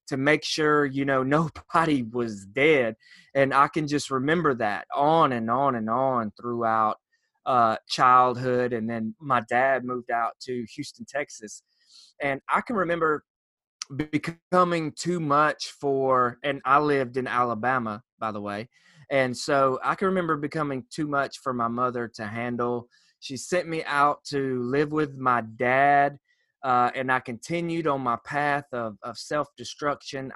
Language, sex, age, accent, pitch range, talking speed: English, male, 20-39, American, 120-145 Hz, 160 wpm